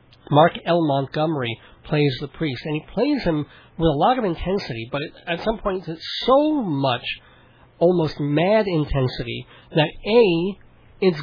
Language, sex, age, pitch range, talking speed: English, male, 40-59, 135-180 Hz, 150 wpm